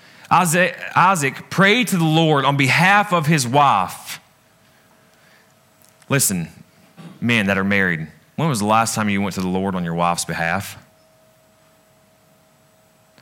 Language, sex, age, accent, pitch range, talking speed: English, male, 30-49, American, 95-125 Hz, 130 wpm